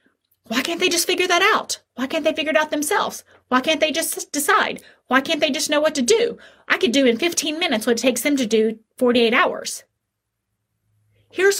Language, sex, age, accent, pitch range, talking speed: English, female, 30-49, American, 215-320 Hz, 215 wpm